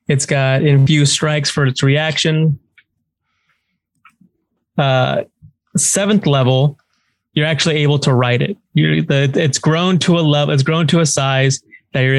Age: 20-39